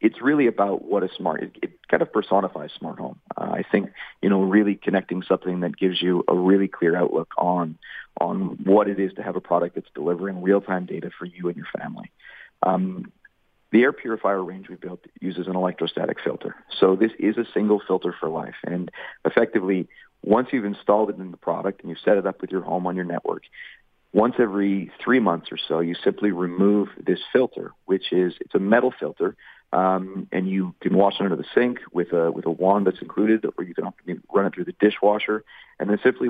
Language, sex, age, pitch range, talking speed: English, male, 40-59, 90-105 Hz, 210 wpm